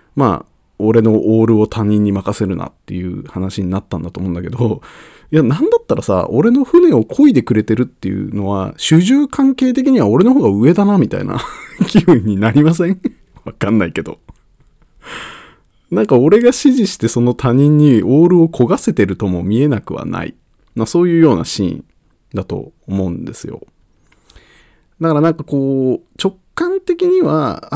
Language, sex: Japanese, male